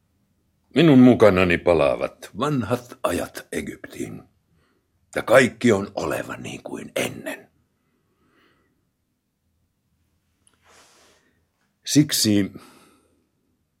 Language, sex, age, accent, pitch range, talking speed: Finnish, male, 60-79, native, 90-110 Hz, 60 wpm